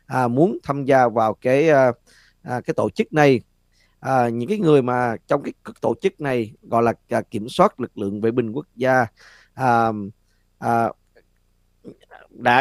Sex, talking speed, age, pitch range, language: male, 170 wpm, 20-39, 115-150 Hz, Vietnamese